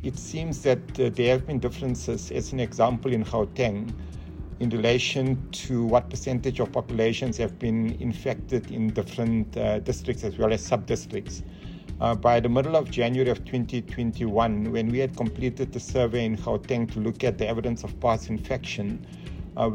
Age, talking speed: 50-69, 165 wpm